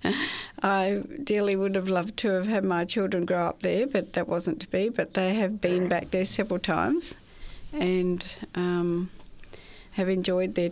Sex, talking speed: female, 175 wpm